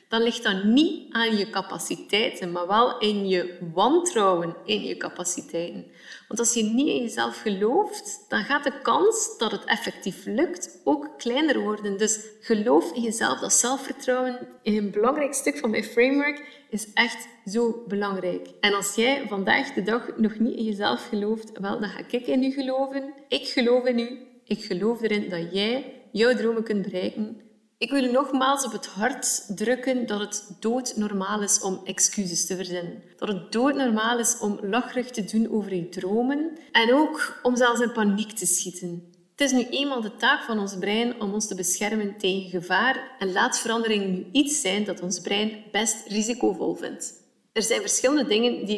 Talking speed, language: 180 wpm, Dutch